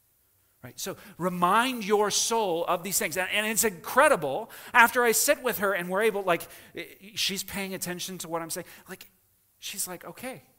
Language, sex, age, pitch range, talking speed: English, male, 40-59, 130-210 Hz, 180 wpm